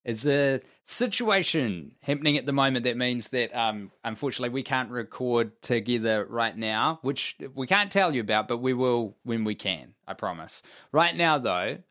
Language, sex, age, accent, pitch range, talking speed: English, male, 20-39, Australian, 105-135 Hz, 175 wpm